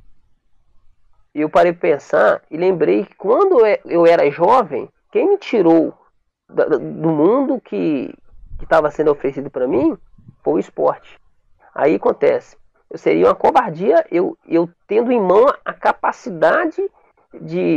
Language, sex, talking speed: Portuguese, male, 140 wpm